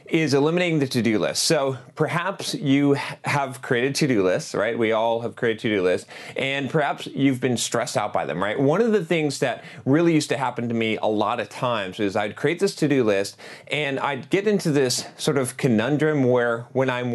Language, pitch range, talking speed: English, 115-150 Hz, 225 wpm